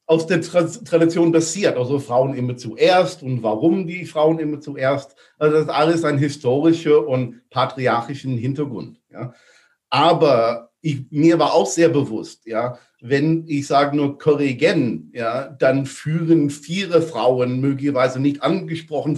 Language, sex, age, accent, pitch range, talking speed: German, male, 50-69, German, 140-165 Hz, 145 wpm